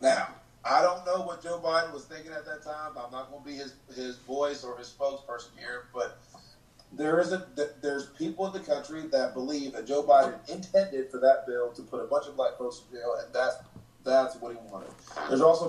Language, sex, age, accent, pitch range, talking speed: English, male, 30-49, American, 125-160 Hz, 225 wpm